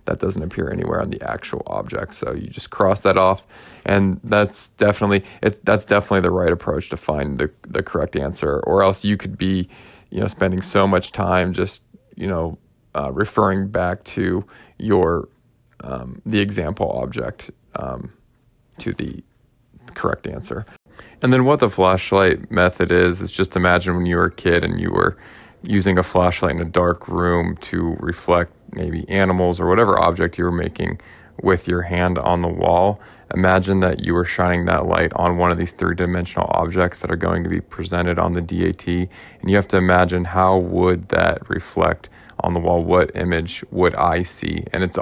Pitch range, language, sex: 85-95 Hz, English, male